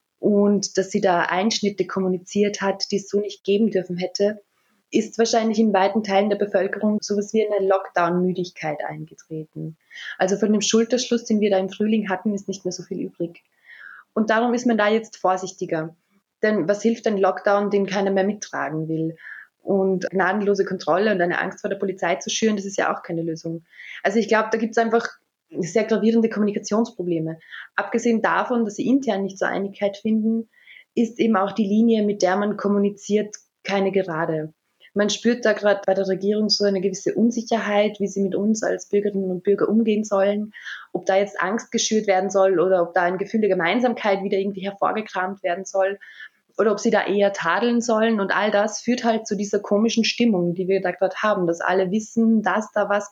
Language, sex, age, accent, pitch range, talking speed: German, female, 20-39, German, 190-215 Hz, 195 wpm